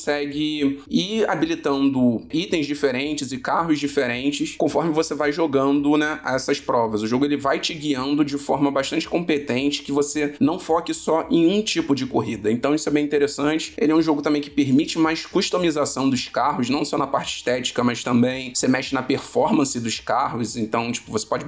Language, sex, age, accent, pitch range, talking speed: Portuguese, male, 20-39, Brazilian, 130-160 Hz, 190 wpm